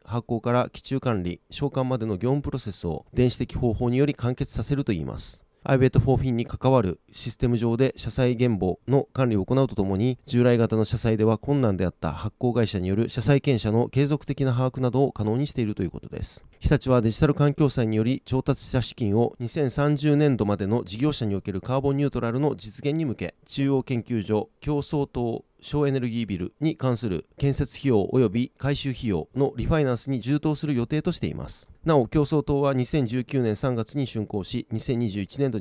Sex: male